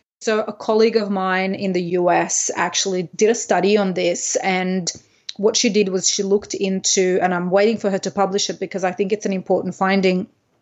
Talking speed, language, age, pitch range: 210 wpm, English, 30-49, 180-210 Hz